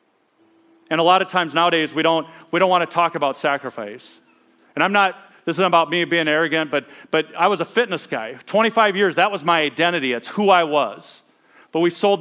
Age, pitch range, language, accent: 40-59, 155-190 Hz, English, American